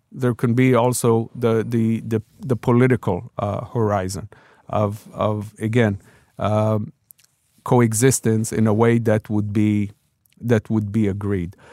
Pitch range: 110-135 Hz